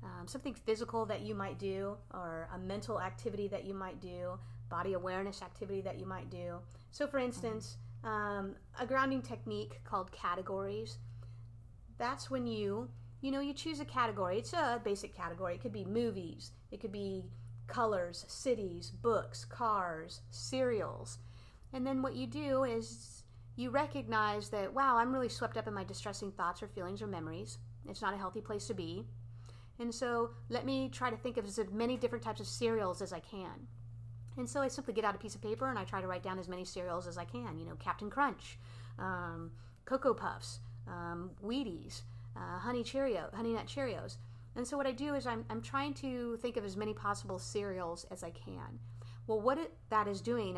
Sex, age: female, 30-49